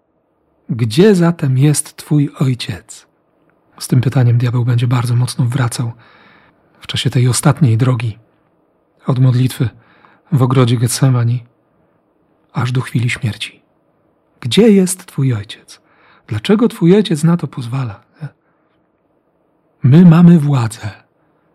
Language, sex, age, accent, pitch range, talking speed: Polish, male, 40-59, native, 125-155 Hz, 110 wpm